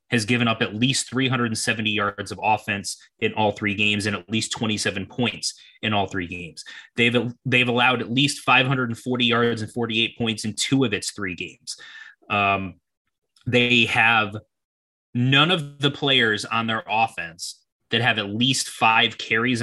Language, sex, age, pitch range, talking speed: English, male, 20-39, 105-120 Hz, 165 wpm